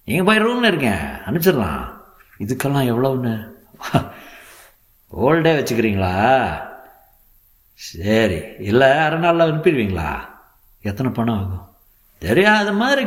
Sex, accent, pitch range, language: male, native, 100-140 Hz, Tamil